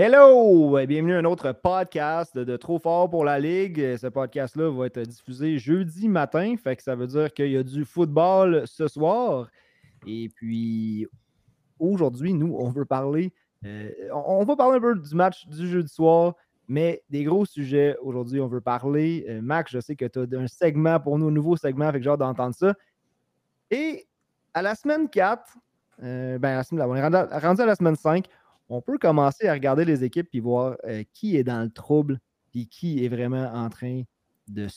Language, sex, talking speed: French, male, 205 wpm